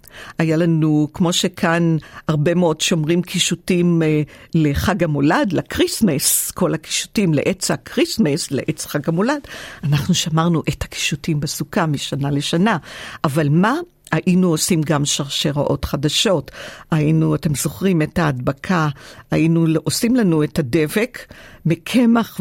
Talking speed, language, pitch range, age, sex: 115 wpm, Hebrew, 150-175 Hz, 50-69, female